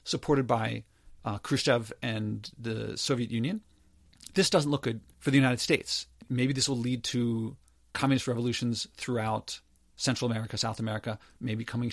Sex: male